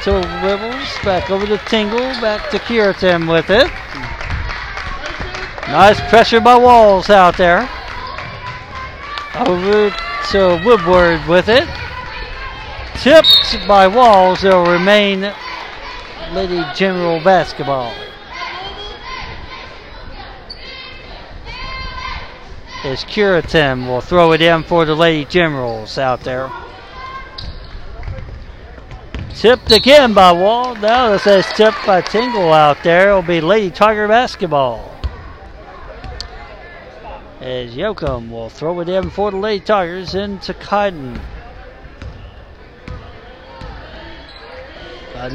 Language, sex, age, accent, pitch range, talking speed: English, male, 60-79, American, 170-220 Hz, 100 wpm